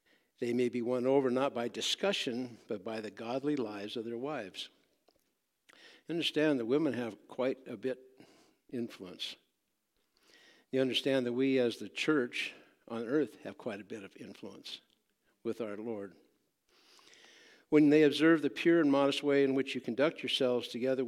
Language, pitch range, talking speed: English, 125-150 Hz, 160 wpm